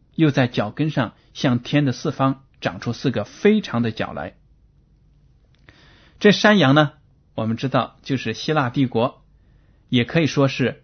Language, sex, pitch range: Chinese, male, 120-155 Hz